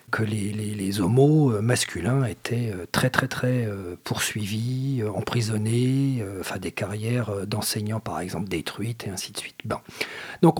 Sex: male